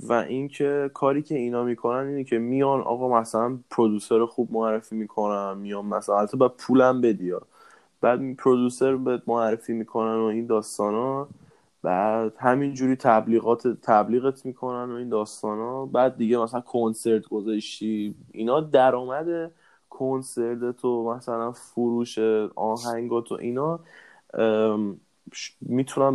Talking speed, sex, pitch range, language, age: 125 wpm, male, 110-125 Hz, Persian, 10-29